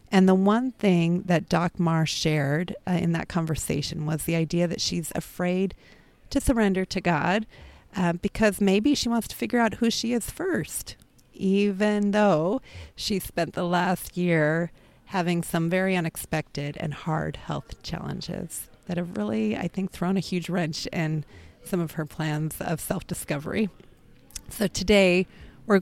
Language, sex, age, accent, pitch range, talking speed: English, female, 40-59, American, 155-185 Hz, 160 wpm